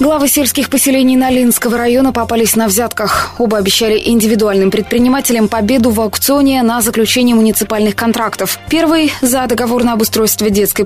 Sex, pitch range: female, 205-255 Hz